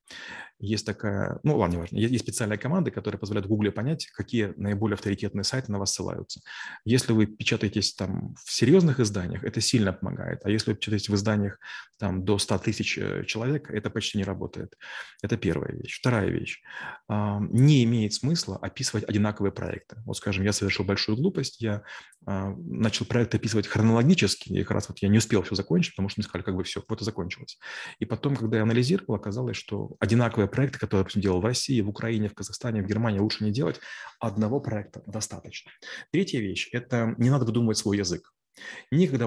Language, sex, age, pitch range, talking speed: Russian, male, 30-49, 100-120 Hz, 185 wpm